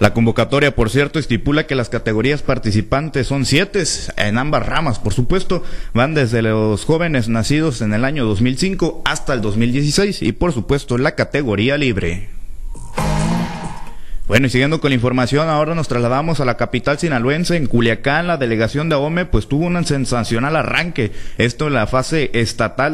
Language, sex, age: Spanish, male, 30-49